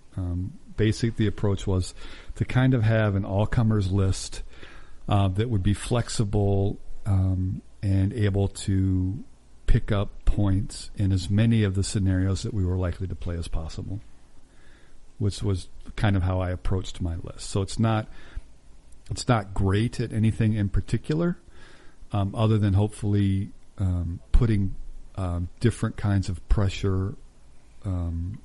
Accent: American